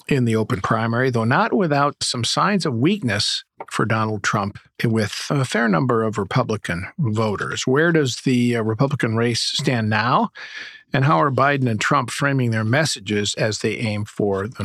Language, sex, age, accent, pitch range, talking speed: English, male, 50-69, American, 110-140 Hz, 170 wpm